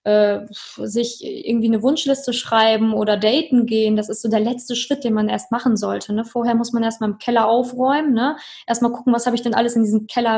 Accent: German